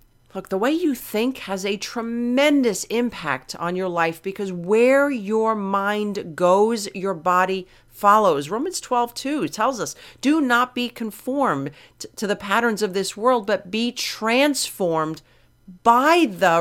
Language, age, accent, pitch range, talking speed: English, 40-59, American, 160-230 Hz, 145 wpm